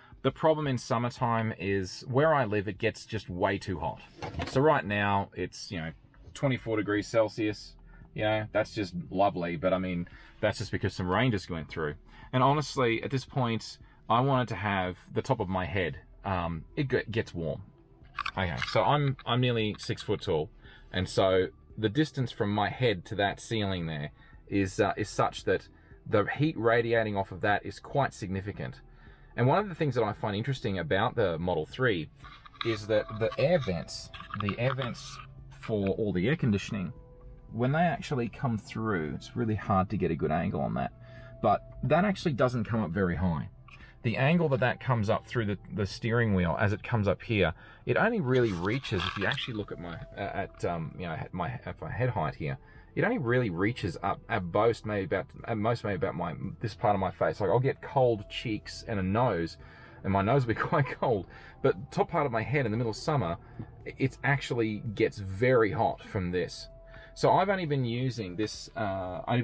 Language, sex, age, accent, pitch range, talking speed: English, male, 20-39, Australian, 95-125 Hz, 205 wpm